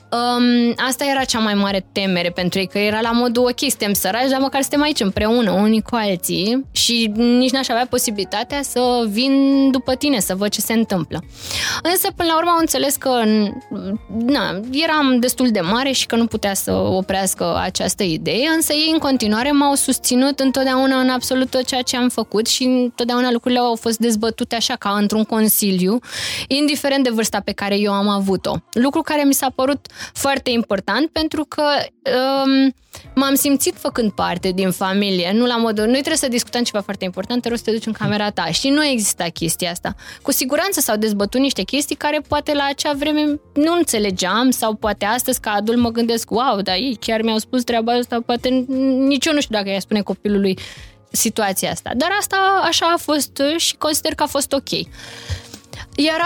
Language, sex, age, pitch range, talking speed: Romanian, female, 20-39, 215-280 Hz, 190 wpm